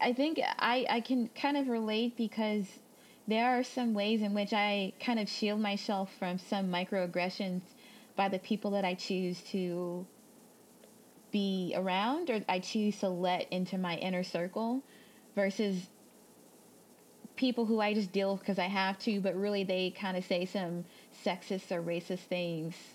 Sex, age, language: female, 20-39, English